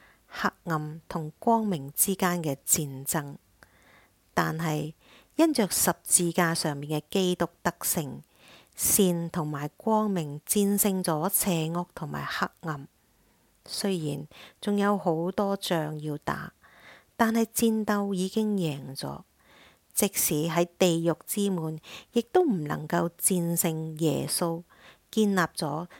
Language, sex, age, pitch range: English, female, 50-69, 155-190 Hz